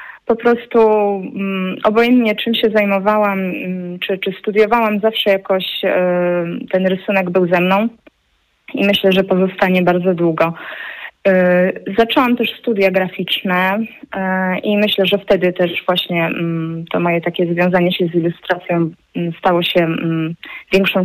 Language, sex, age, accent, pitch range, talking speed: Polish, female, 20-39, native, 175-200 Hz, 120 wpm